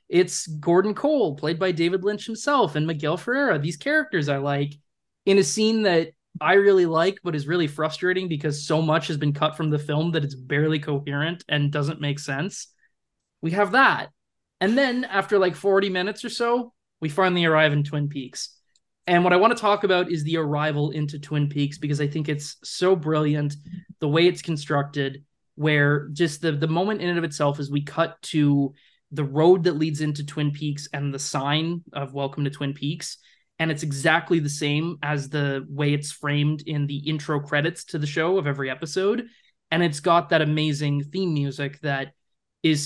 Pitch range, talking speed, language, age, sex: 145-170 Hz, 195 wpm, English, 20-39, male